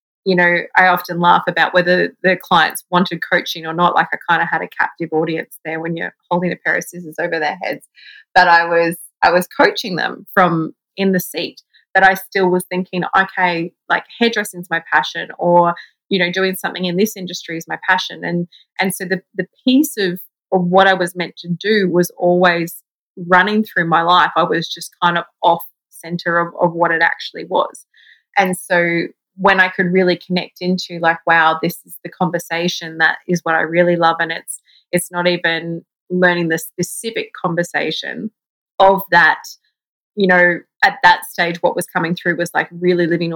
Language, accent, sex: English, Australian, female